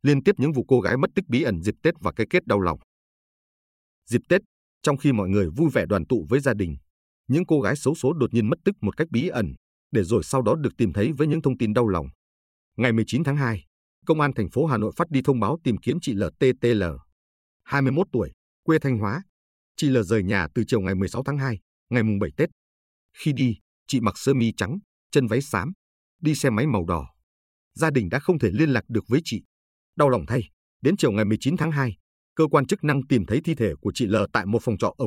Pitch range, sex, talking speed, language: 95-140 Hz, male, 250 wpm, Vietnamese